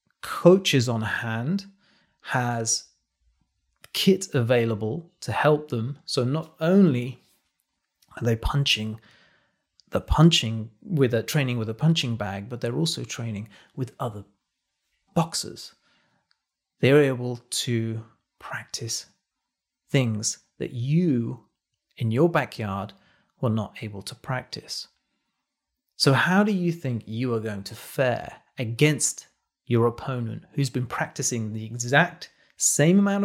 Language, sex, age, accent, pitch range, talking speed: English, male, 30-49, British, 115-150 Hz, 120 wpm